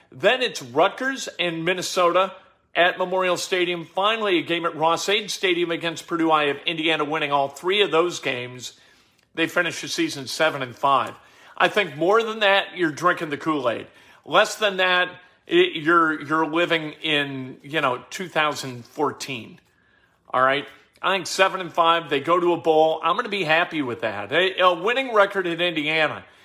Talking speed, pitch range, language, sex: 180 wpm, 155-190 Hz, English, male